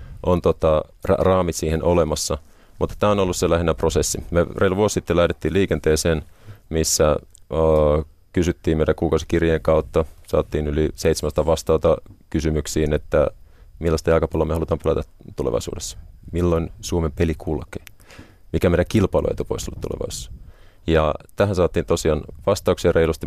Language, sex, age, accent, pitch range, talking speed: Finnish, male, 30-49, native, 80-95 Hz, 135 wpm